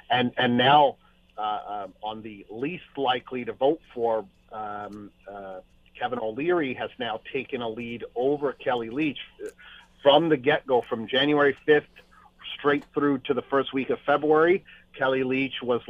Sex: male